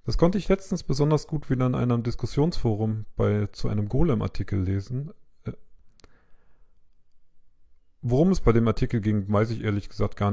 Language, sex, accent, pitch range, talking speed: German, male, German, 105-135 Hz, 145 wpm